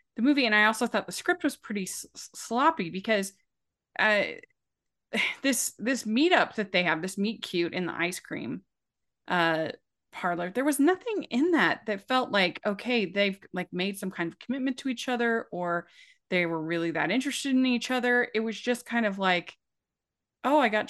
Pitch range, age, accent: 185-245 Hz, 20-39, American